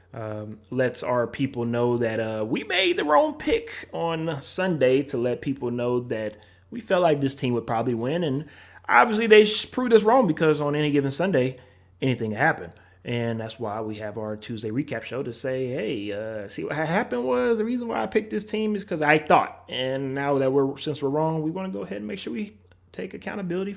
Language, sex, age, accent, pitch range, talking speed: English, male, 30-49, American, 115-155 Hz, 220 wpm